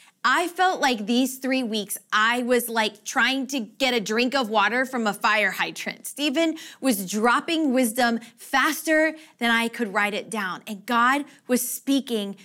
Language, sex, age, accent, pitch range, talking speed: English, female, 20-39, American, 215-275 Hz, 170 wpm